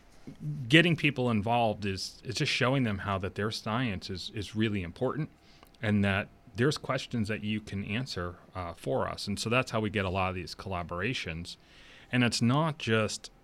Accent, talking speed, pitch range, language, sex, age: American, 190 wpm, 95-110 Hz, English, male, 30-49